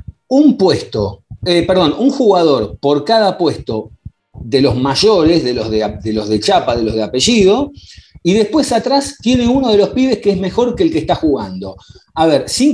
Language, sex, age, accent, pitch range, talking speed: Spanish, male, 40-59, Argentinian, 135-215 Hz, 200 wpm